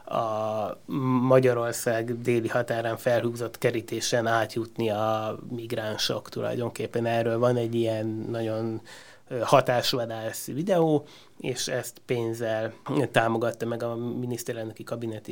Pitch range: 115-130 Hz